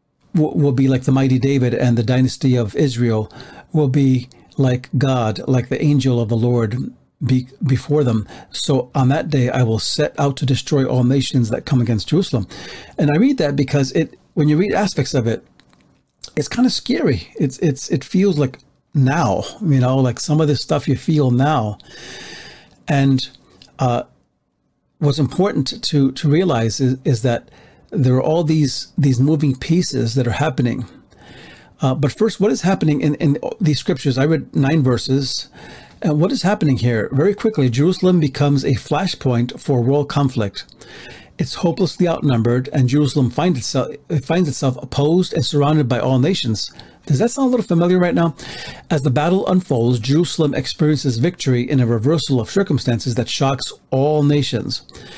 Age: 50-69